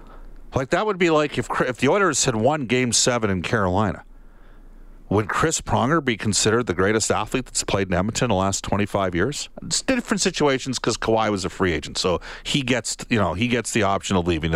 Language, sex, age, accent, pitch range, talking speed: English, male, 50-69, American, 90-125 Hz, 215 wpm